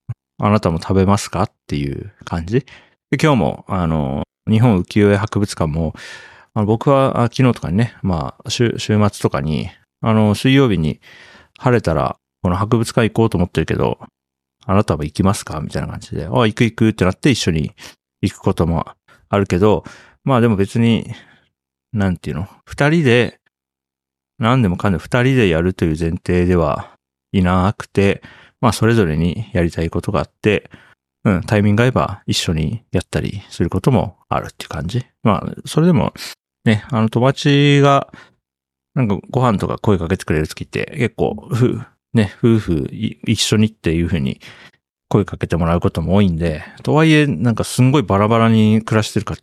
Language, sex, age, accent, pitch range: Japanese, male, 40-59, native, 85-115 Hz